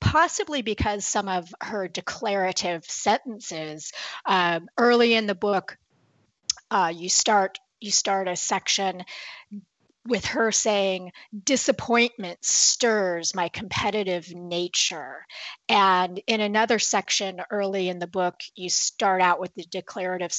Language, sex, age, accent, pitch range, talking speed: English, female, 40-59, American, 180-235 Hz, 120 wpm